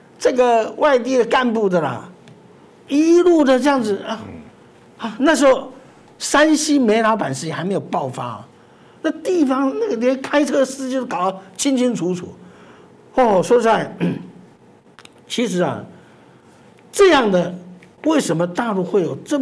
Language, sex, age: Chinese, male, 60-79